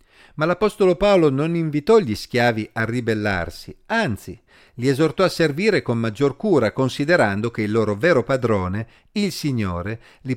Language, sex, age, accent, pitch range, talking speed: Italian, male, 50-69, native, 115-170 Hz, 150 wpm